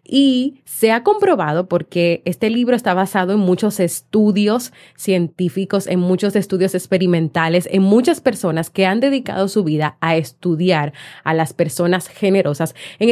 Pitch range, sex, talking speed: 165-220 Hz, female, 145 wpm